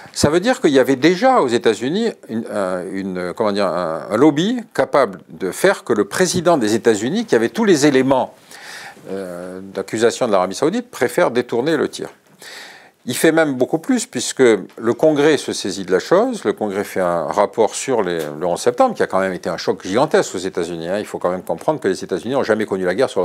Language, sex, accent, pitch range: French, male, French, 110-180 Hz